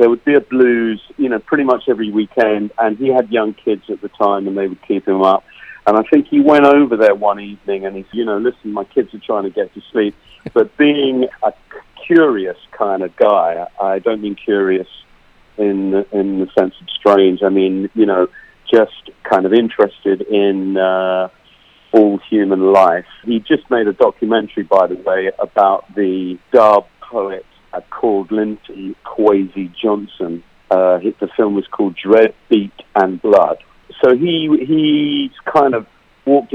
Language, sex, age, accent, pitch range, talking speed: English, male, 40-59, British, 95-125 Hz, 175 wpm